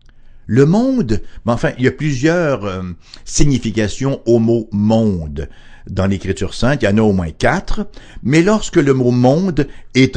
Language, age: English, 60-79